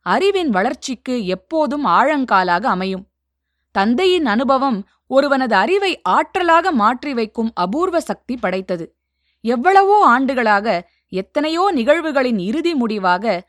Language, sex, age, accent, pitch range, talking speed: Tamil, female, 20-39, native, 195-290 Hz, 95 wpm